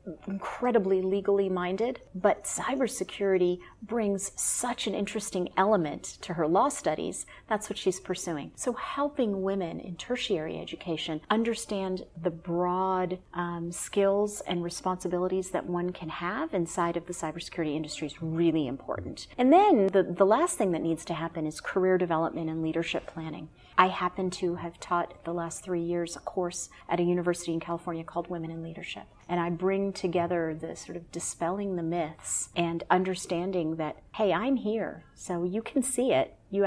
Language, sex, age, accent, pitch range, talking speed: English, female, 30-49, American, 170-210 Hz, 165 wpm